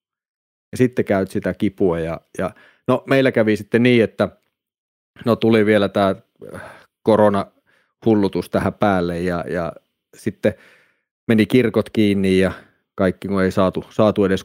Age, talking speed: 30-49, 135 wpm